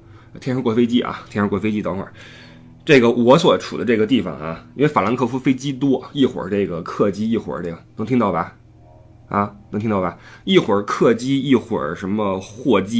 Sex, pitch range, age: male, 100-130 Hz, 20-39